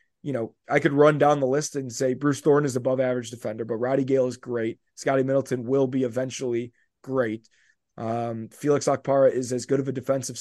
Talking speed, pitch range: 210 wpm, 130-155 Hz